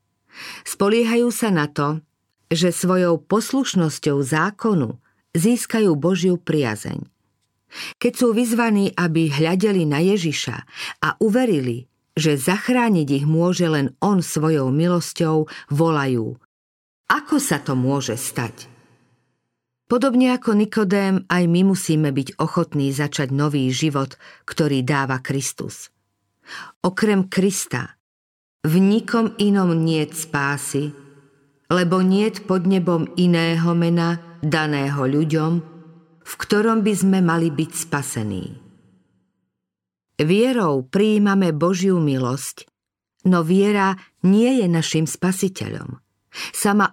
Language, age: Slovak, 50-69